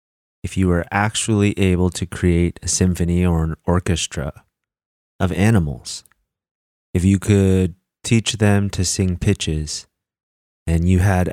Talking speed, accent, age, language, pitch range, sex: 130 wpm, American, 30-49, English, 80-100 Hz, male